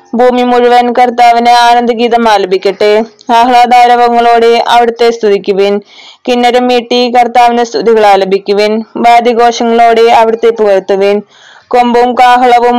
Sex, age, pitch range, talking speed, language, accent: female, 20-39, 225-240 Hz, 75 wpm, Malayalam, native